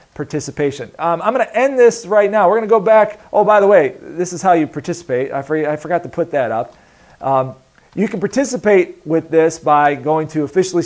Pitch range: 140-175 Hz